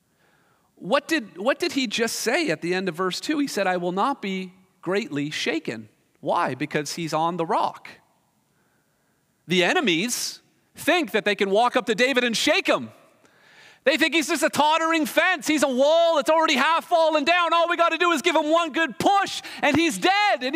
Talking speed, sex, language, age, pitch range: 205 wpm, male, English, 40-59, 225-320 Hz